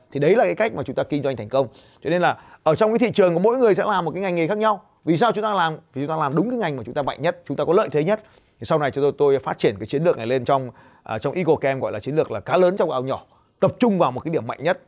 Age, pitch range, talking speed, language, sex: 20-39, 135-195 Hz, 360 wpm, Vietnamese, male